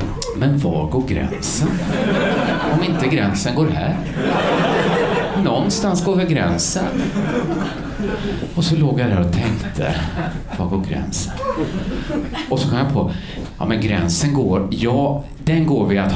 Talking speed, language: 135 wpm, Italian